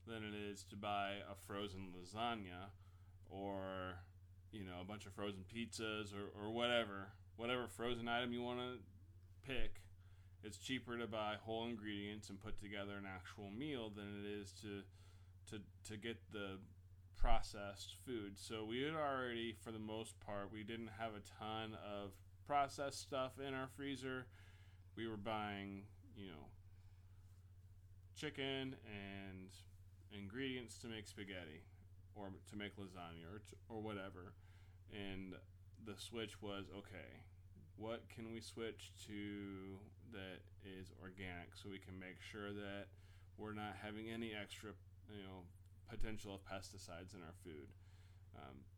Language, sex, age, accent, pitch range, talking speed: English, male, 20-39, American, 95-110 Hz, 145 wpm